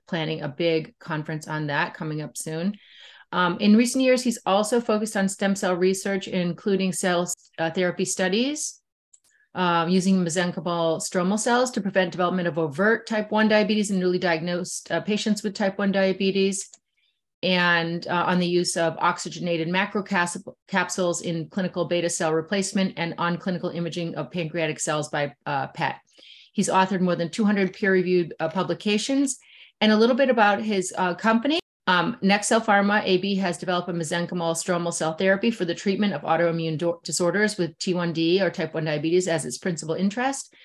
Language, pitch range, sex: English, 170-200 Hz, female